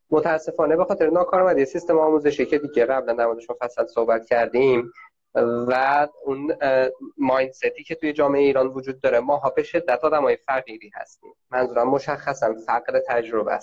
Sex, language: male, Persian